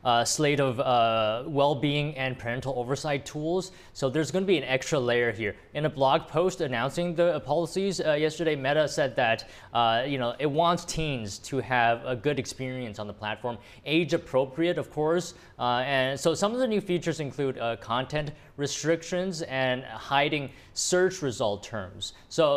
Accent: American